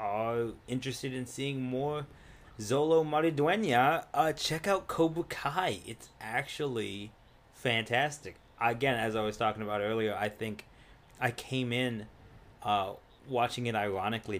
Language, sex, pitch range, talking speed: English, male, 105-125 Hz, 125 wpm